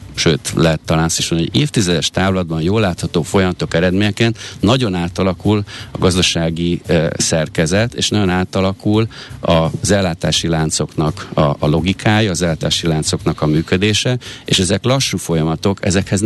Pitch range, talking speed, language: 80-100 Hz, 140 wpm, Hungarian